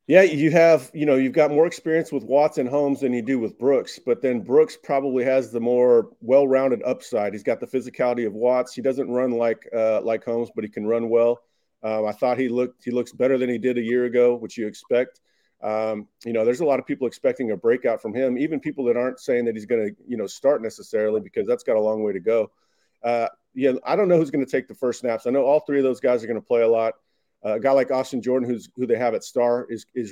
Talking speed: 270 wpm